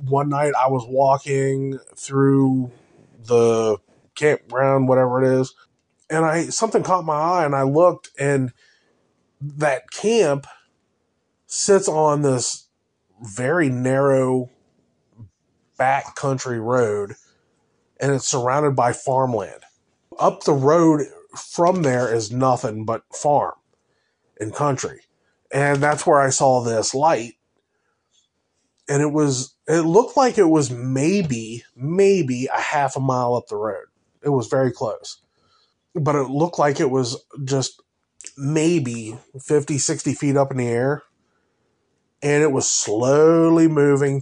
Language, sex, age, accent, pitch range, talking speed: English, male, 20-39, American, 125-150 Hz, 130 wpm